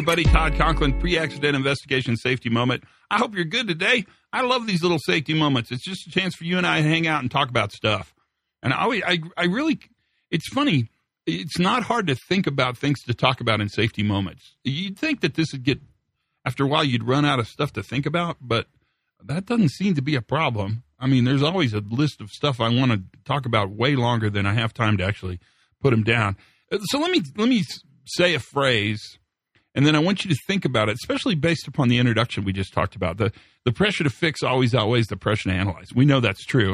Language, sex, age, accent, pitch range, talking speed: English, male, 40-59, American, 115-170 Hz, 235 wpm